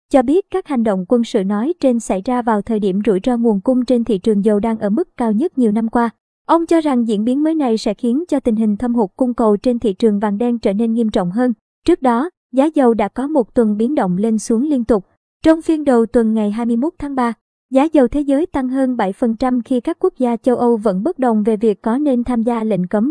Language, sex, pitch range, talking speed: Vietnamese, male, 220-260 Hz, 265 wpm